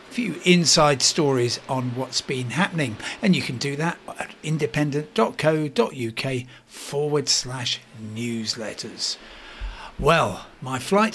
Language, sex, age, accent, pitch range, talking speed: English, male, 60-79, British, 130-180 Hz, 110 wpm